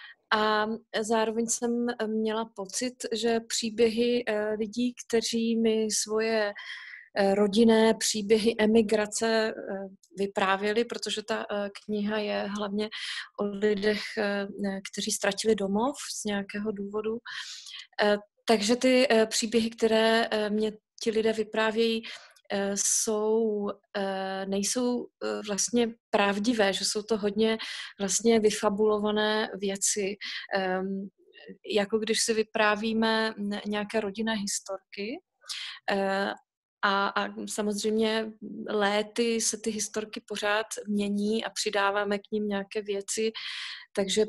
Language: Italian